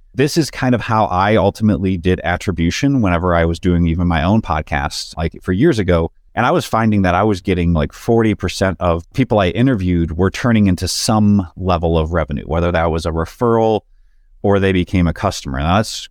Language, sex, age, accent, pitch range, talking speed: English, male, 30-49, American, 90-110 Hz, 200 wpm